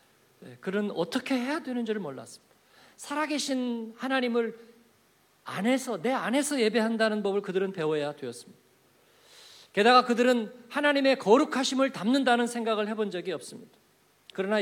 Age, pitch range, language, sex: 50-69, 185-250 Hz, Korean, male